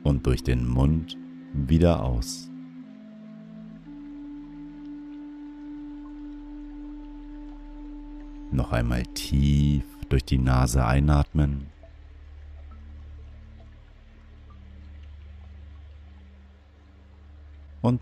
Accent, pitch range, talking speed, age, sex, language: German, 70-80 Hz, 45 wpm, 50-69, male, German